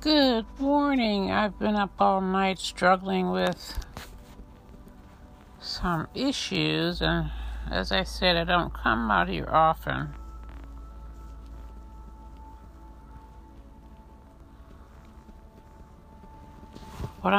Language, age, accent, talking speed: English, 60-79, American, 75 wpm